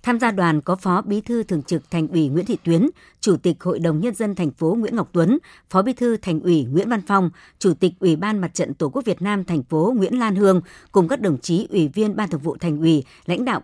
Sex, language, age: male, Vietnamese, 60-79